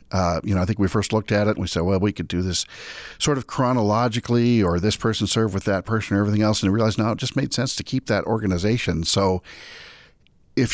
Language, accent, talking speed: English, American, 250 wpm